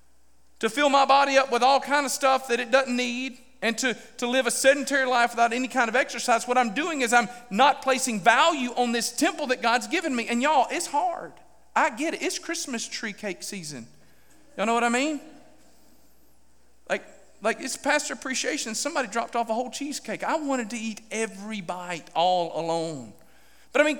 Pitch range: 210-280 Hz